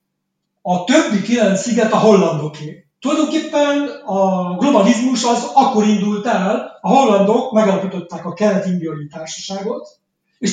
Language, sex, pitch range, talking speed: Hungarian, male, 175-225 Hz, 120 wpm